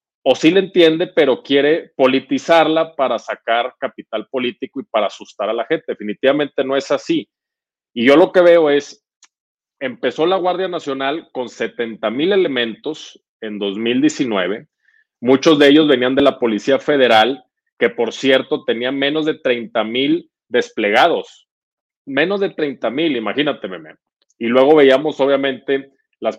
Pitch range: 120-160 Hz